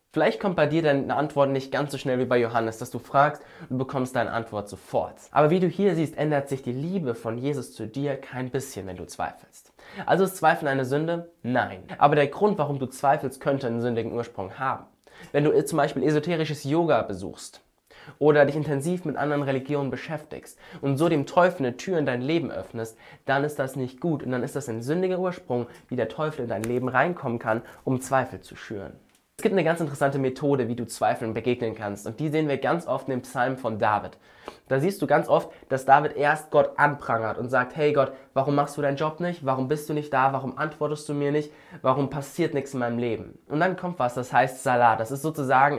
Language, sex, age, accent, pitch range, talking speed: German, male, 20-39, German, 125-150 Hz, 225 wpm